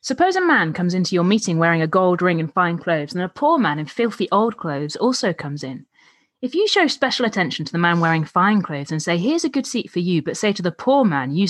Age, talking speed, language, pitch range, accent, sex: 30-49, 265 wpm, English, 165-230 Hz, British, female